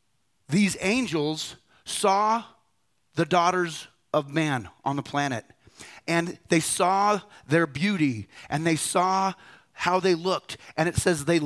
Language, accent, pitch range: English, American, 145-180 Hz